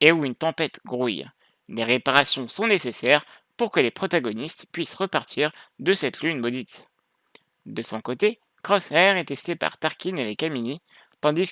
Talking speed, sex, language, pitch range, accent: 160 wpm, male, French, 135-185 Hz, French